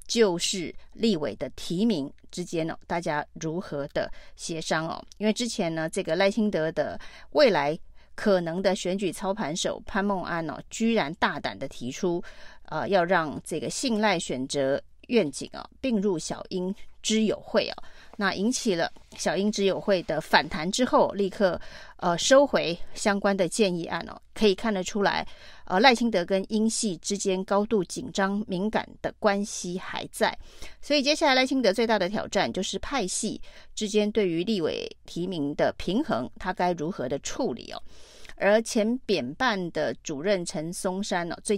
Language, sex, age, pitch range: Chinese, female, 30-49, 175-215 Hz